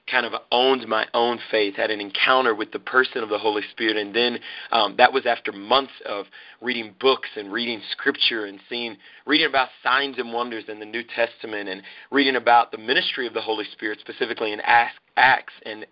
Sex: male